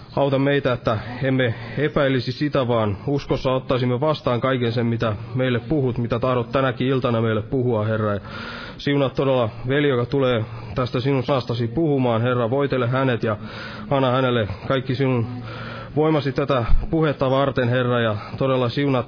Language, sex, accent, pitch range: Finnish, male, native, 115-135 Hz